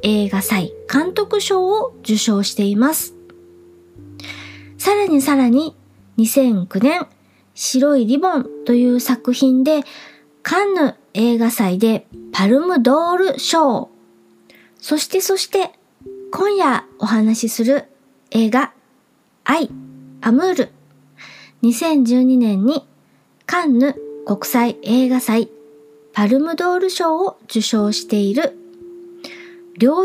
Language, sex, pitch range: Japanese, male, 195-305 Hz